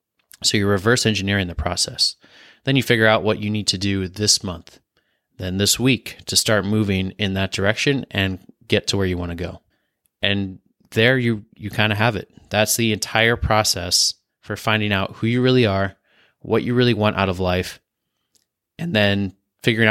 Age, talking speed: 20-39, 190 wpm